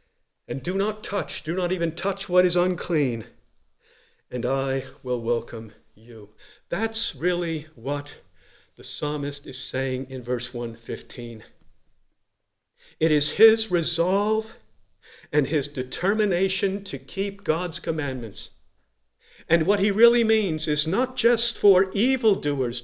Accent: American